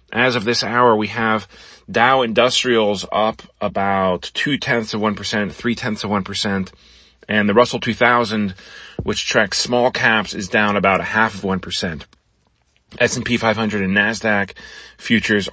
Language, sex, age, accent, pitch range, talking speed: English, male, 30-49, American, 100-120 Hz, 140 wpm